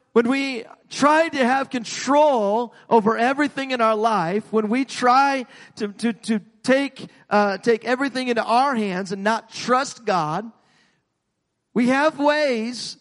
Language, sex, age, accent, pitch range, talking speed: English, male, 50-69, American, 170-245 Hz, 145 wpm